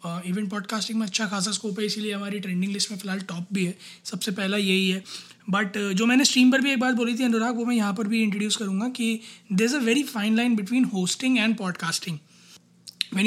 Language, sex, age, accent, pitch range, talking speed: Hindi, male, 20-39, native, 195-240 Hz, 235 wpm